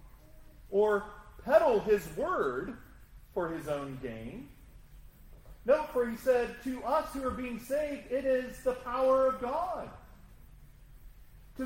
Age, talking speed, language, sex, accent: 40-59, 130 wpm, English, male, American